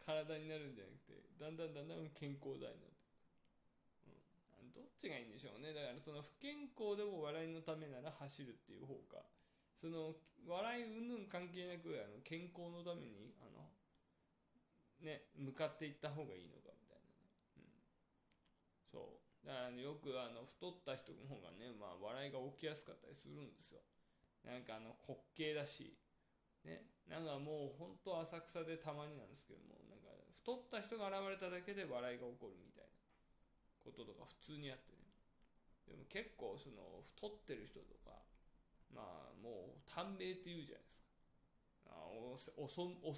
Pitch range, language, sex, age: 135-180 Hz, Japanese, male, 20-39